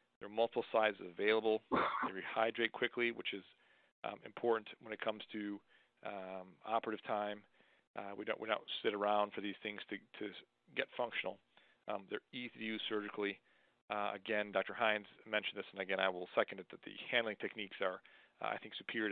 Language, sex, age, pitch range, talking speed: English, male, 40-59, 100-115 Hz, 190 wpm